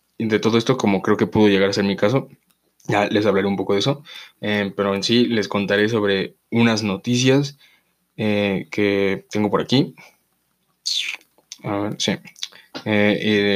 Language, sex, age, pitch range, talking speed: Spanish, male, 20-39, 100-110 Hz, 170 wpm